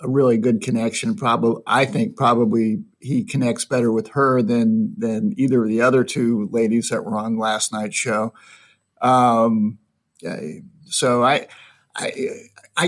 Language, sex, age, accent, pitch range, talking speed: English, male, 50-69, American, 130-155 Hz, 150 wpm